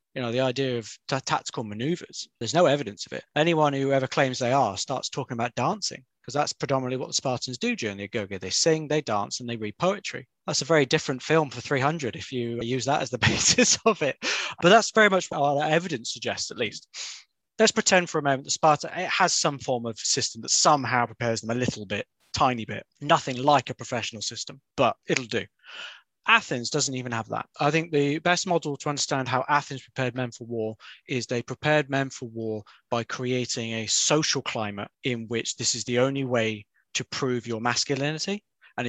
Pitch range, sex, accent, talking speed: 120-150 Hz, male, British, 215 wpm